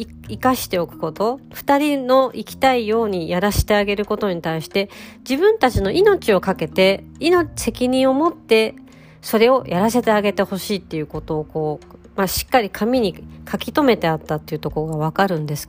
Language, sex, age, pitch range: Japanese, female, 40-59, 160-245 Hz